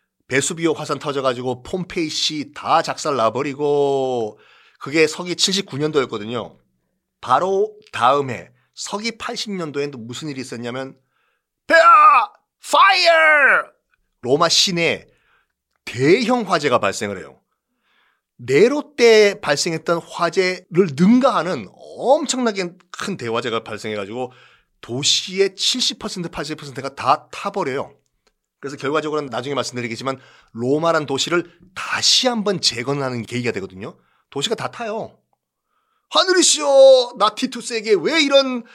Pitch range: 140-235 Hz